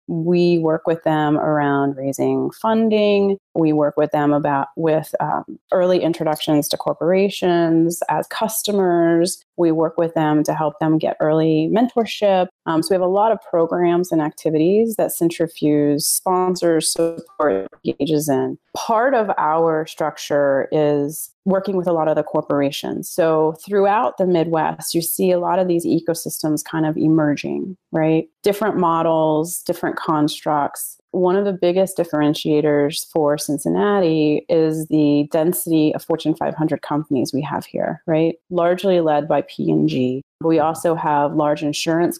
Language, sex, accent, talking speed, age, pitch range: English, female, American, 150 wpm, 30-49, 150-175 Hz